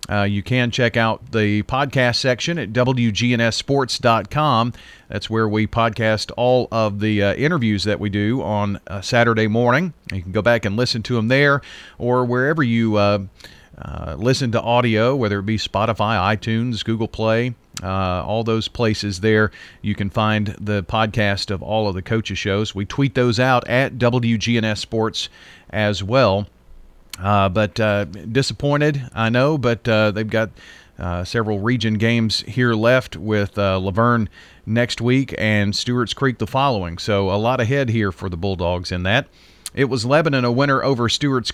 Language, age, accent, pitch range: English, 40-59, American, 105-125 Hz